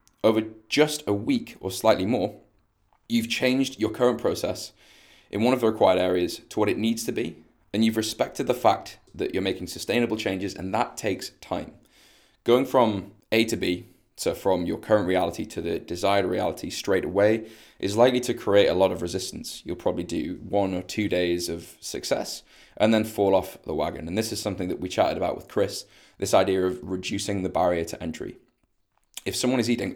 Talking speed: 200 wpm